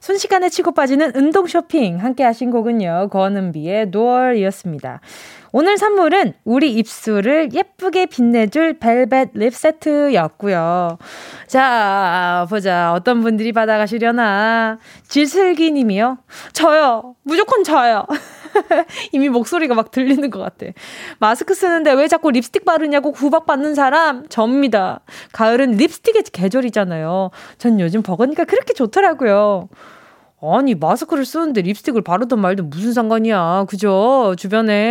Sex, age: female, 20-39